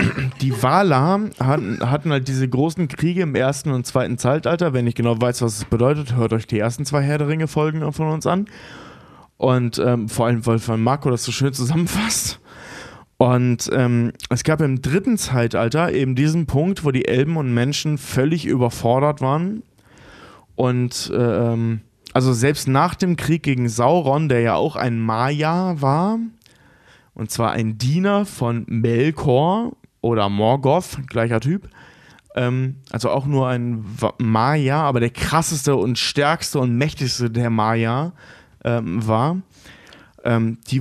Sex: male